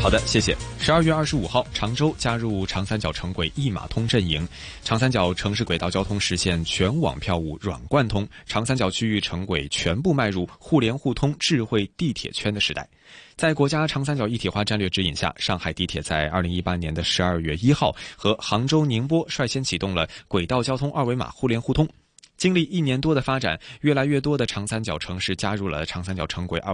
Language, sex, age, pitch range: Chinese, male, 20-39, 90-135 Hz